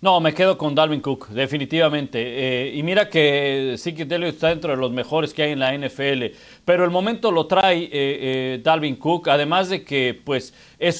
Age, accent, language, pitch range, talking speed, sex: 40-59, Mexican, Spanish, 150-195 Hz, 205 wpm, male